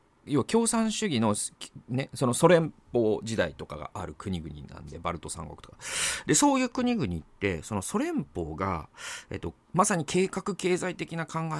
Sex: male